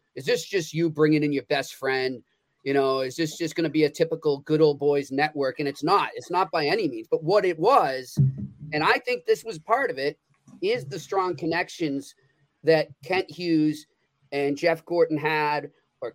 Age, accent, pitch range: 30-49, American, 150-185 Hz